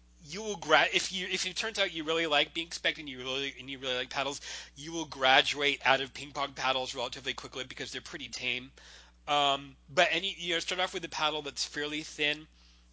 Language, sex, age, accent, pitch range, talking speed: English, male, 30-49, American, 125-160 Hz, 225 wpm